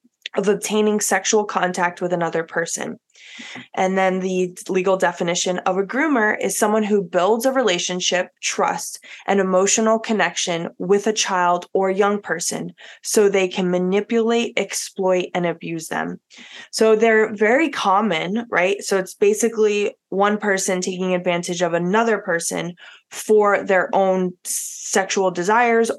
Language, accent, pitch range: English, American, 180-215 Hz